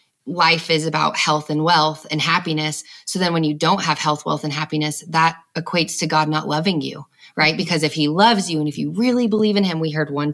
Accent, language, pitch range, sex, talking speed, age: American, English, 150-165 Hz, female, 240 wpm, 20-39